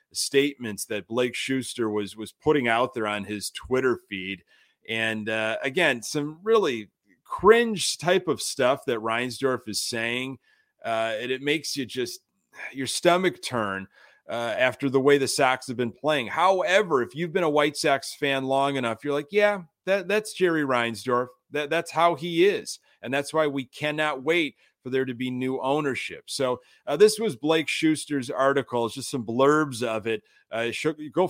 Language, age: English, 30-49